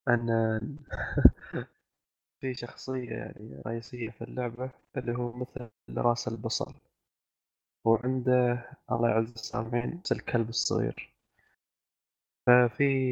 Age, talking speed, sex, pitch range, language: 20-39, 90 wpm, male, 115-130 Hz, Arabic